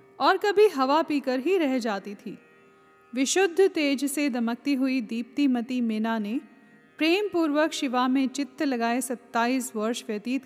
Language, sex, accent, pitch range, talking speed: Hindi, female, native, 230-280 Hz, 150 wpm